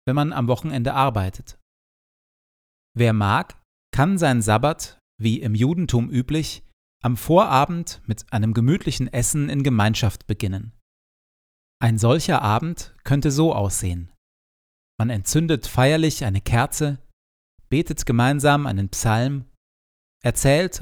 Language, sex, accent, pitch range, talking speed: German, male, German, 105-140 Hz, 110 wpm